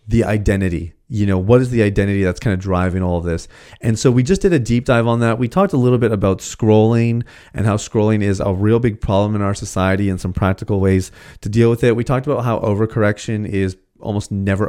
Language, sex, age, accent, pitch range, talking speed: English, male, 30-49, American, 100-120 Hz, 240 wpm